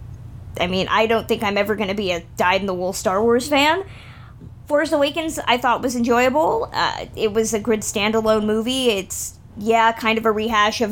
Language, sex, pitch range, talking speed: English, female, 205-245 Hz, 210 wpm